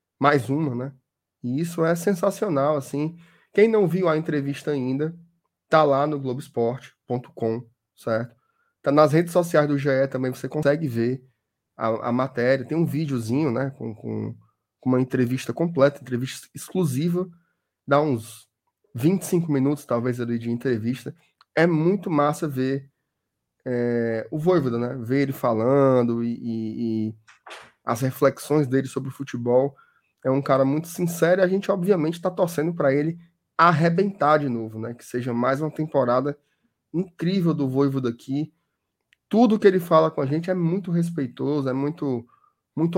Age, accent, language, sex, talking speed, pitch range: 20-39, Brazilian, Portuguese, male, 155 wpm, 130-170 Hz